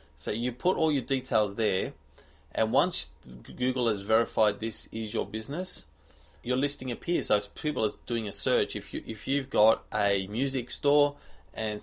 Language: English